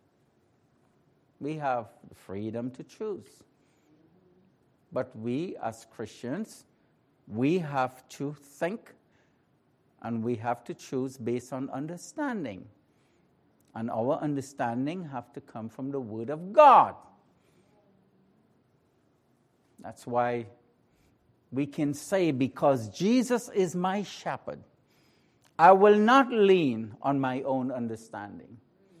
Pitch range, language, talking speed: 120-175 Hz, English, 105 wpm